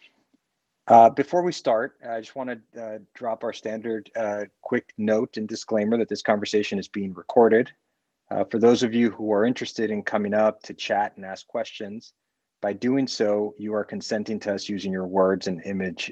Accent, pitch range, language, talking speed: American, 100-115 Hz, English, 195 wpm